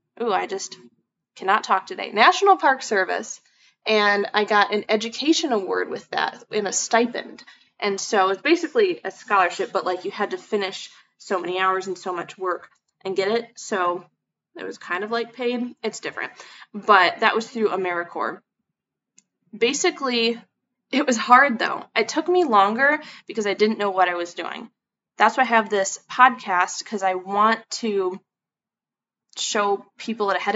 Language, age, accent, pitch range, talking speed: English, 20-39, American, 190-235 Hz, 170 wpm